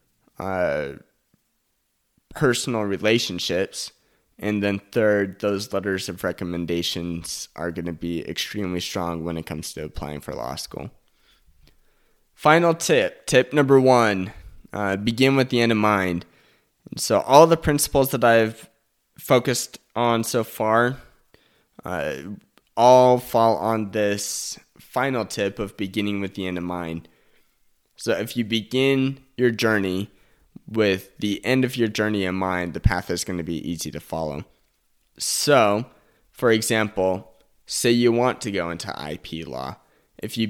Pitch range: 90-120 Hz